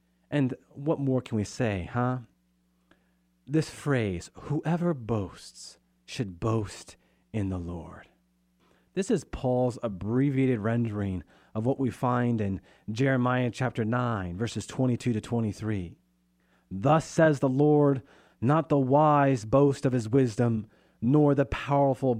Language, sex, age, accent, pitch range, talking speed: English, male, 40-59, American, 100-135 Hz, 125 wpm